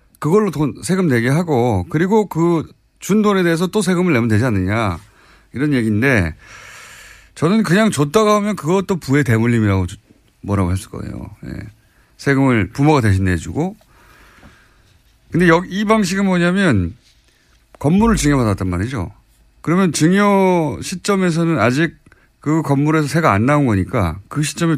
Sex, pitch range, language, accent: male, 110-170 Hz, Korean, native